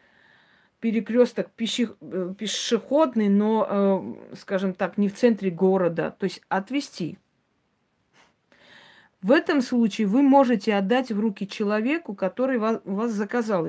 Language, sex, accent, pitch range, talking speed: Russian, female, native, 190-235 Hz, 110 wpm